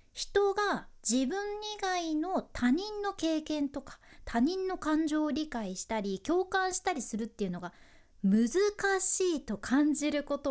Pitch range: 205-340 Hz